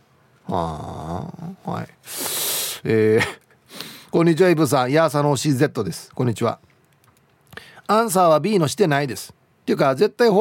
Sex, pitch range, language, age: male, 120-175 Hz, Japanese, 40-59